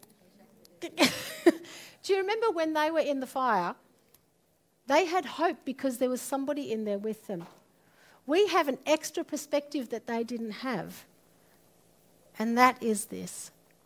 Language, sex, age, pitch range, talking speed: English, female, 50-69, 205-290 Hz, 145 wpm